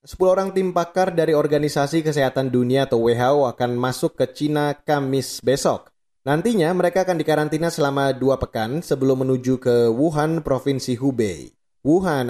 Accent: native